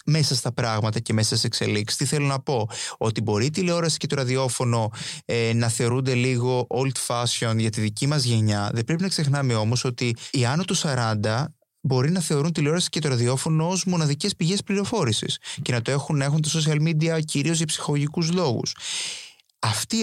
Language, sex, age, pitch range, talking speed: Greek, male, 20-39, 120-155 Hz, 185 wpm